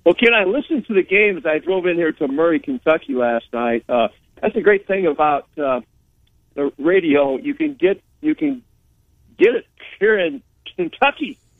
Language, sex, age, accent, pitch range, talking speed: English, male, 50-69, American, 145-230 Hz, 180 wpm